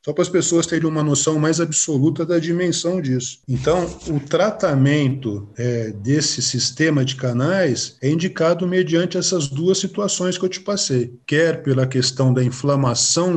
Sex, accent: male, Brazilian